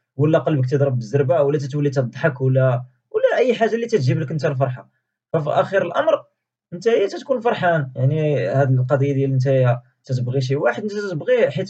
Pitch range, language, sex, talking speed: 130-185 Hz, Arabic, male, 175 wpm